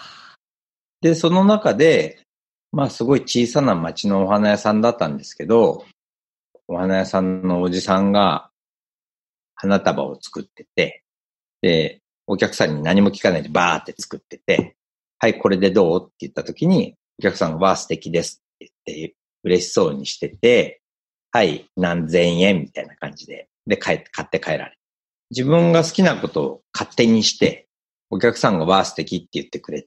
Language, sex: Japanese, male